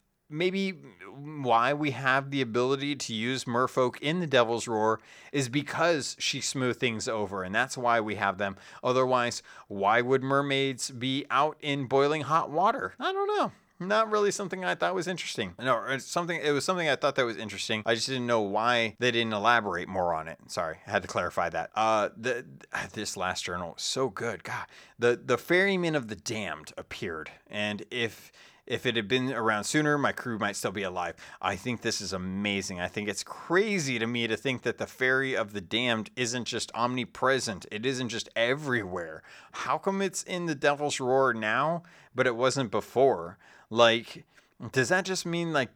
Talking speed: 190 wpm